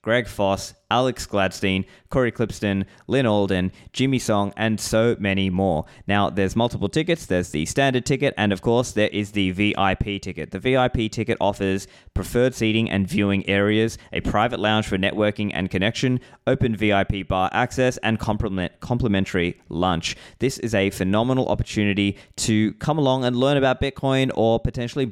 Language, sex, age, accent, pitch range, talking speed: English, male, 20-39, Australian, 95-120 Hz, 160 wpm